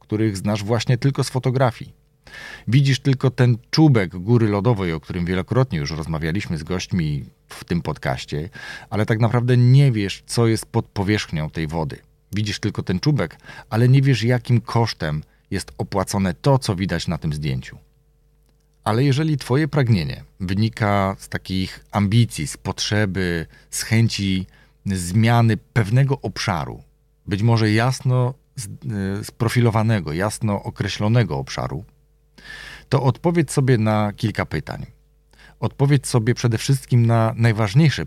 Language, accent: Polish, native